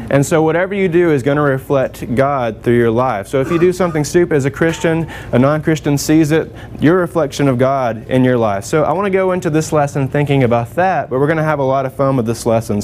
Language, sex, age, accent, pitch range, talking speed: English, male, 20-39, American, 120-155 Hz, 265 wpm